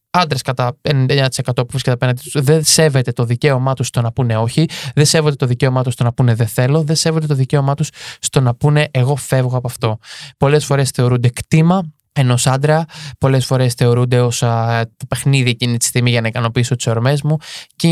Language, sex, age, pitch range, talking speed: Greek, male, 20-39, 125-150 Hz, 200 wpm